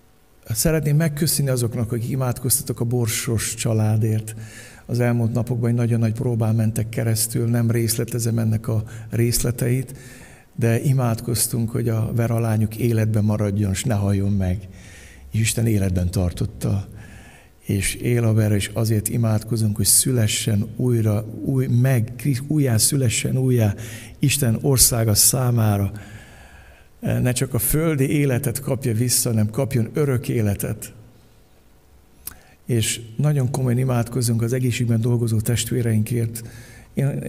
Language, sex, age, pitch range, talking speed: Hungarian, male, 60-79, 110-125 Hz, 120 wpm